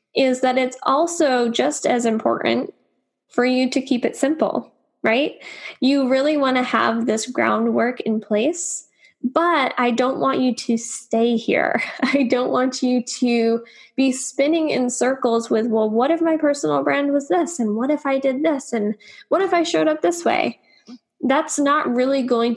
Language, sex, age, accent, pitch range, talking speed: English, female, 10-29, American, 230-290 Hz, 180 wpm